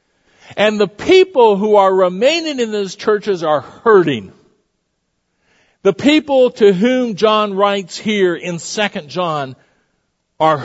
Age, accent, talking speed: 50-69, American, 125 wpm